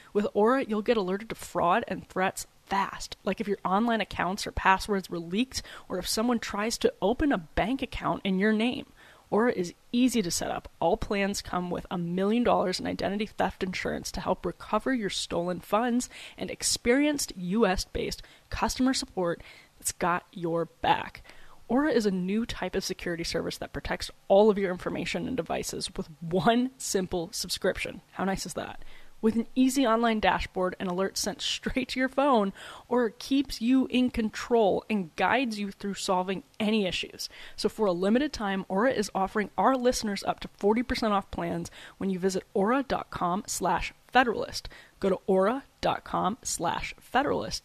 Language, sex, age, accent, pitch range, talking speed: English, female, 20-39, American, 190-240 Hz, 170 wpm